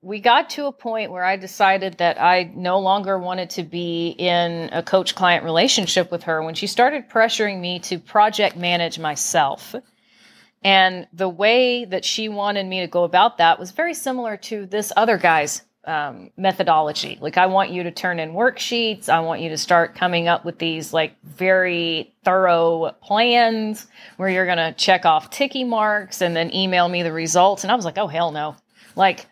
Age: 40-59